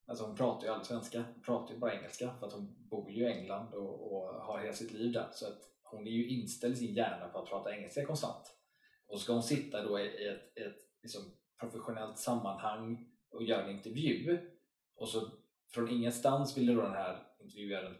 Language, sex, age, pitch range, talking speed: Swedish, male, 20-39, 110-125 Hz, 215 wpm